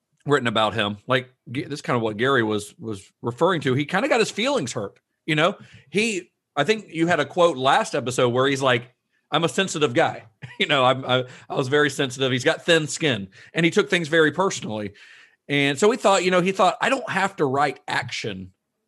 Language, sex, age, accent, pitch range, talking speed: English, male, 40-59, American, 125-170 Hz, 225 wpm